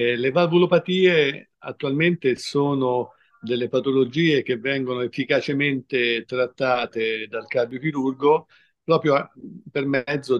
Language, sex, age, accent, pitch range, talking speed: Italian, male, 50-69, native, 120-145 Hz, 90 wpm